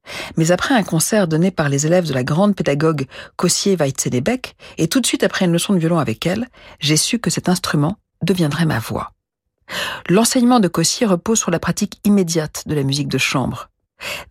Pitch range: 160-210 Hz